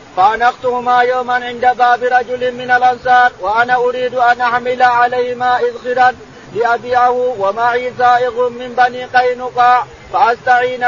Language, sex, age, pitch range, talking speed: Arabic, male, 40-59, 245-250 Hz, 110 wpm